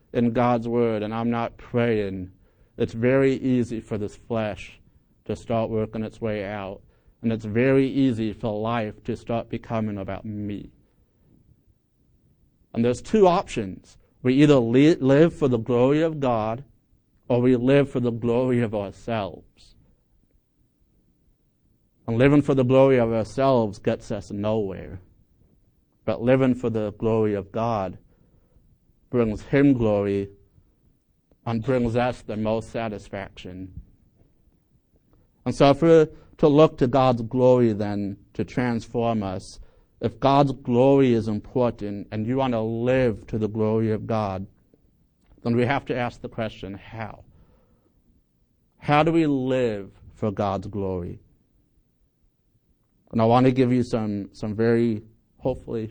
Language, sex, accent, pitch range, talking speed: English, male, American, 105-125 Hz, 140 wpm